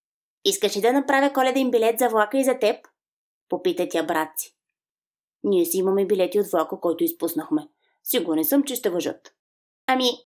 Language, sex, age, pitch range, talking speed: English, female, 20-39, 180-270 Hz, 165 wpm